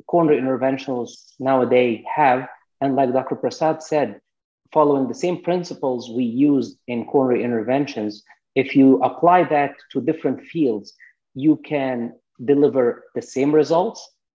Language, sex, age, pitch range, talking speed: English, male, 30-49, 125-145 Hz, 130 wpm